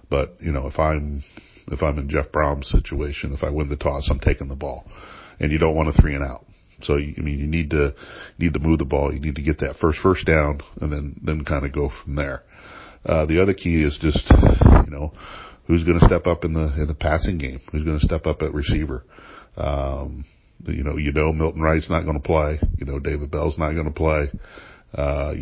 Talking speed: 240 wpm